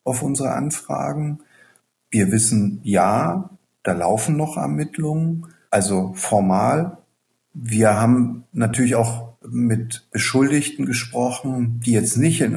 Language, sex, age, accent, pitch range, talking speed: German, male, 50-69, German, 110-130 Hz, 110 wpm